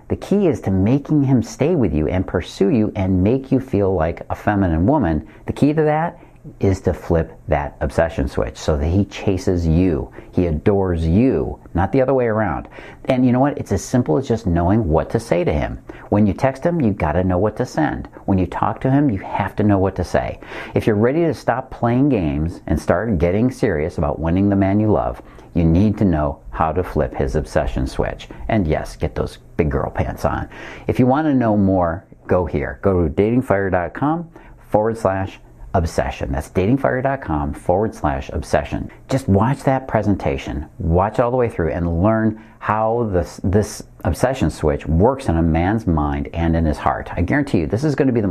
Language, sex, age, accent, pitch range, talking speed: English, male, 50-69, American, 85-120 Hz, 210 wpm